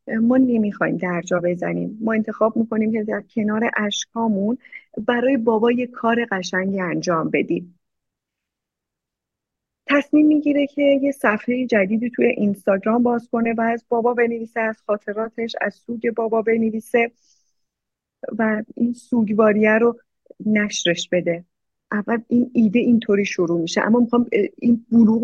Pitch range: 200-250 Hz